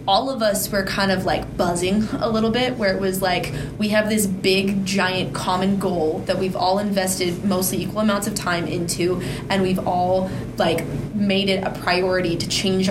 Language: English